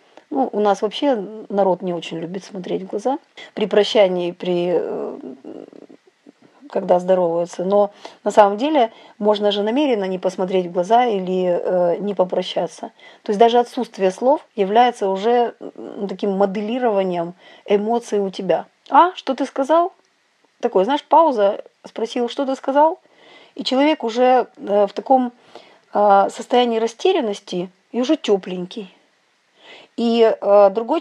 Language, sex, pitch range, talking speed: English, female, 195-250 Hz, 130 wpm